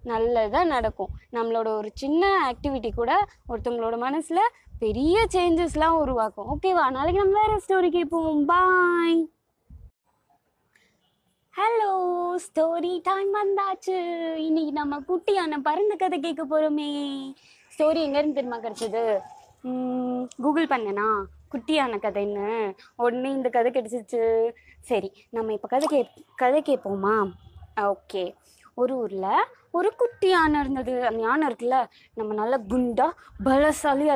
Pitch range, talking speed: 245-350 Hz, 95 wpm